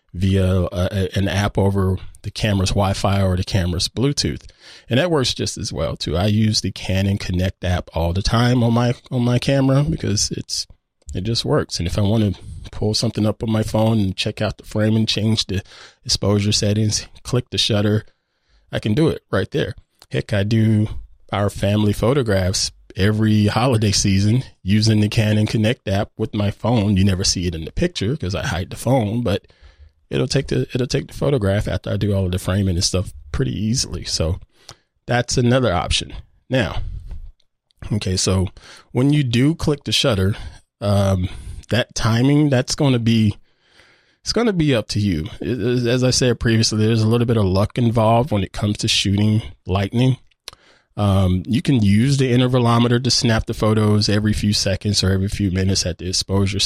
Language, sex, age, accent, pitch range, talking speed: English, male, 20-39, American, 95-115 Hz, 190 wpm